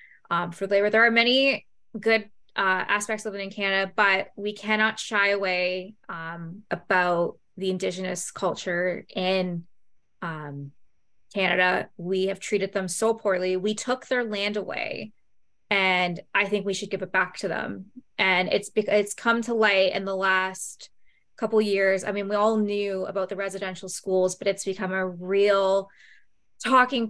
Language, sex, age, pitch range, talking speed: English, female, 20-39, 185-210 Hz, 165 wpm